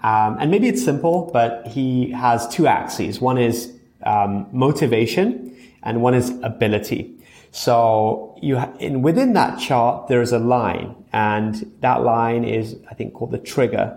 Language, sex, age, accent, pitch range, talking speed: English, male, 30-49, British, 120-155 Hz, 165 wpm